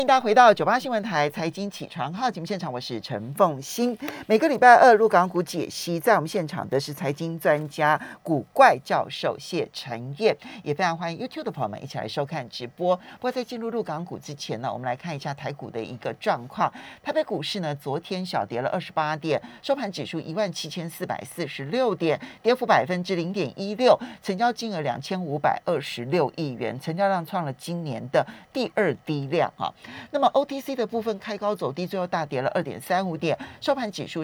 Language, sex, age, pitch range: Chinese, male, 50-69, 145-200 Hz